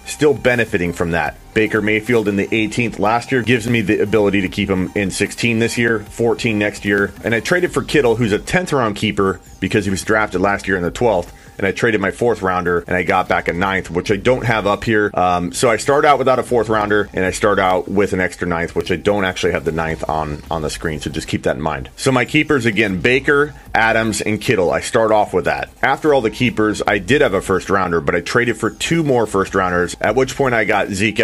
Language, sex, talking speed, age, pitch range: English, male, 255 wpm, 30-49, 95-120 Hz